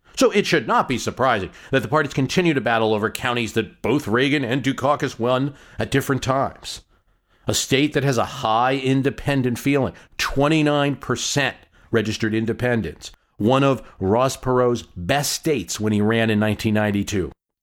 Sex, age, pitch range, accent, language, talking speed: male, 50-69, 100-140 Hz, American, English, 155 wpm